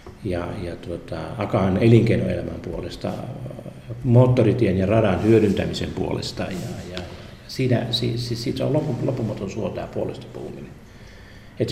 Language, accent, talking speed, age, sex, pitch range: Finnish, native, 120 wpm, 50-69, male, 95-120 Hz